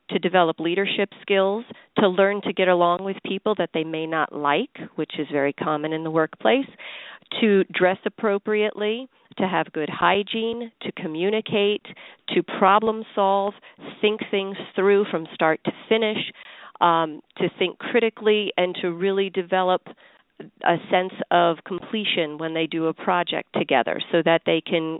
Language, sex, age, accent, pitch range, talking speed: English, female, 40-59, American, 170-200 Hz, 155 wpm